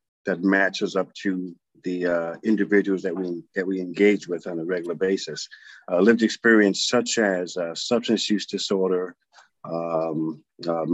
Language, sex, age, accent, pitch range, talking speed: English, male, 50-69, American, 85-105 Hz, 150 wpm